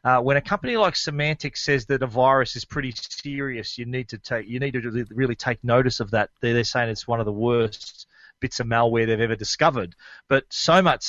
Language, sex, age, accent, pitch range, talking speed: English, male, 40-59, Australian, 120-150 Hz, 240 wpm